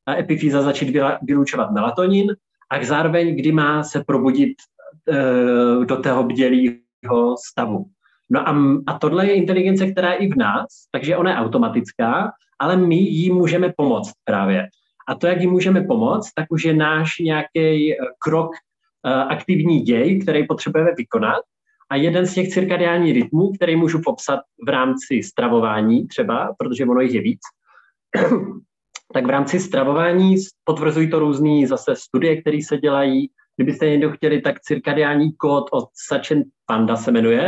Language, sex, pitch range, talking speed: Czech, male, 140-185 Hz, 155 wpm